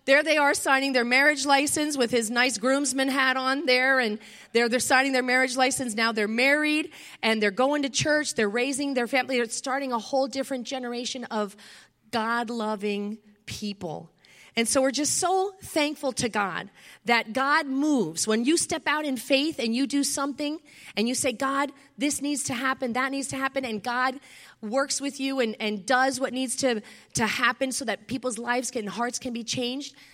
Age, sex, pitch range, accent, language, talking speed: 30-49, female, 220-275 Hz, American, English, 195 wpm